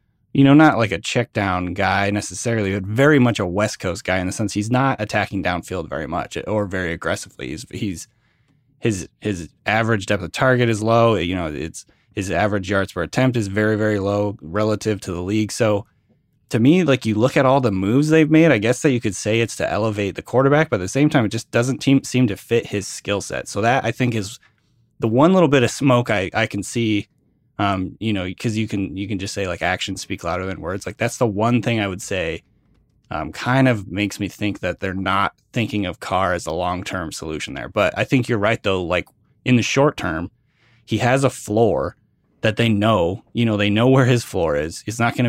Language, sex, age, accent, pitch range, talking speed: English, male, 20-39, American, 100-120 Hz, 235 wpm